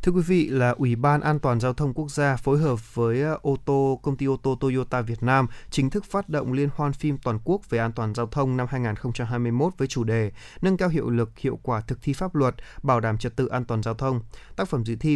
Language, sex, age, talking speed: Vietnamese, male, 20-39, 255 wpm